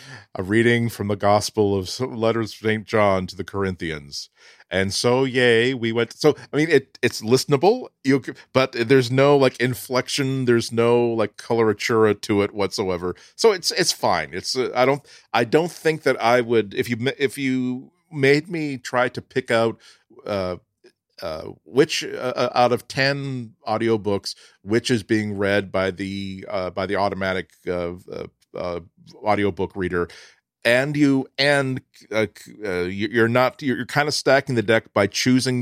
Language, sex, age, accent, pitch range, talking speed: English, male, 40-59, American, 100-130 Hz, 170 wpm